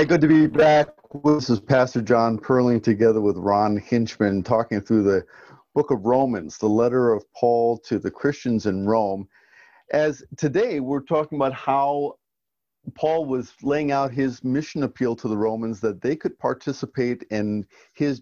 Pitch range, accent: 110-140 Hz, American